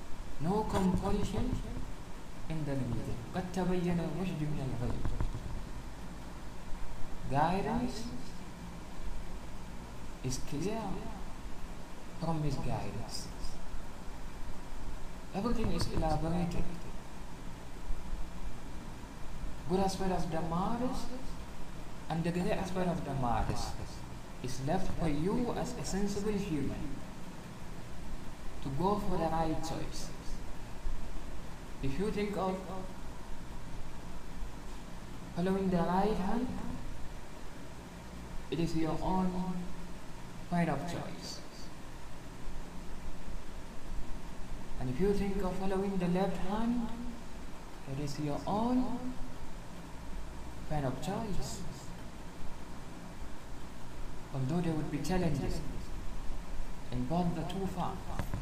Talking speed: 85 wpm